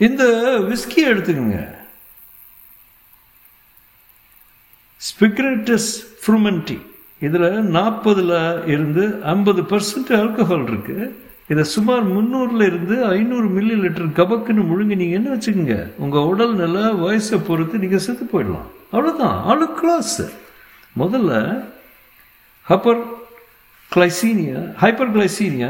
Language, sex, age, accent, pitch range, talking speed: Tamil, male, 60-79, native, 160-230 Hz, 60 wpm